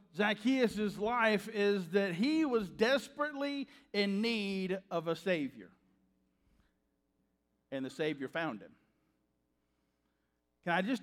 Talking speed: 110 wpm